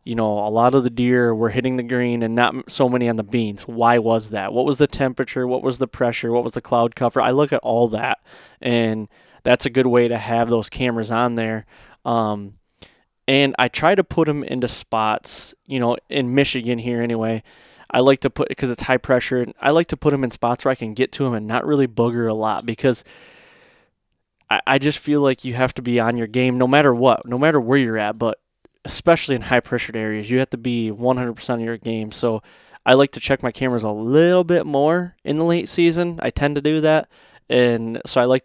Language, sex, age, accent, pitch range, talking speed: English, male, 20-39, American, 115-135 Hz, 235 wpm